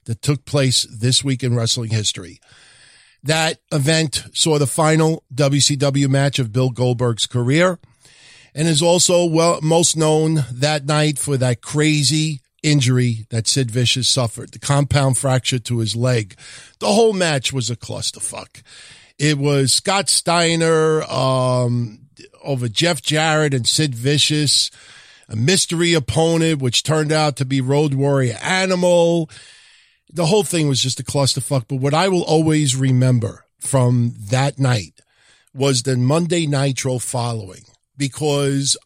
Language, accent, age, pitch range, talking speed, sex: English, American, 50-69, 125-160 Hz, 140 wpm, male